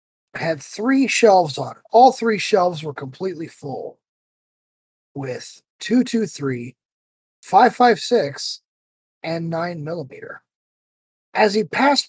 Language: English